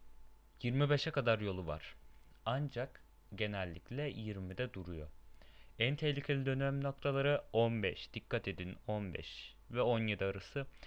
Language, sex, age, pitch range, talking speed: Turkish, male, 30-49, 90-125 Hz, 105 wpm